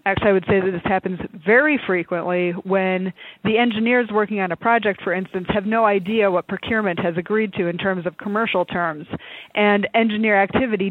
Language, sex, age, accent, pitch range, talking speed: English, female, 30-49, American, 180-215 Hz, 185 wpm